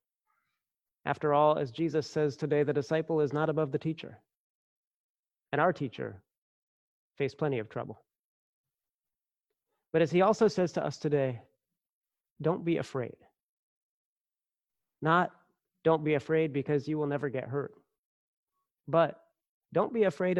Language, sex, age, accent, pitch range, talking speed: English, male, 30-49, American, 135-165 Hz, 130 wpm